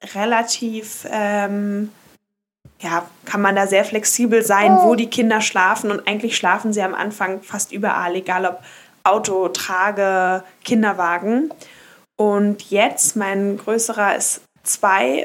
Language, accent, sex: German, German, female